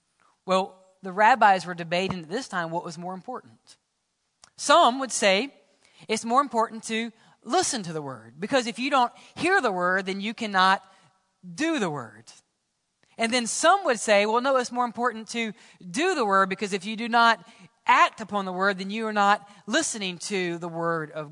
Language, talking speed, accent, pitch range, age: English, 190 wpm, American, 175-225 Hz, 40-59